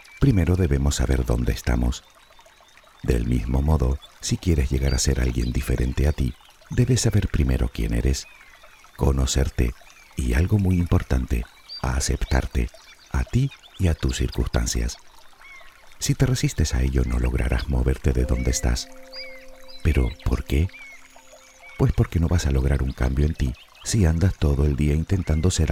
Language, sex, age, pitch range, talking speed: Spanish, male, 50-69, 65-95 Hz, 150 wpm